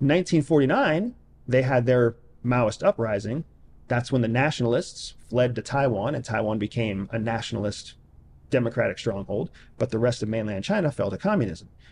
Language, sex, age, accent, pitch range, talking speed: English, male, 40-59, American, 110-140 Hz, 145 wpm